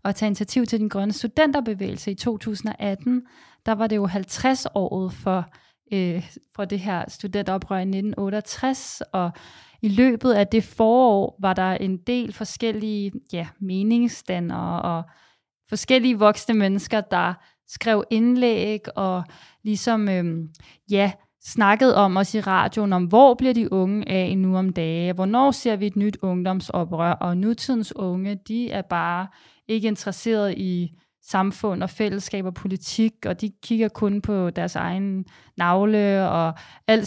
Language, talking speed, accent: Danish, 145 wpm, native